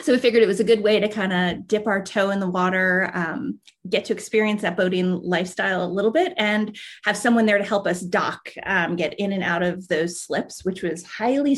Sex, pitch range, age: female, 180-225 Hz, 30-49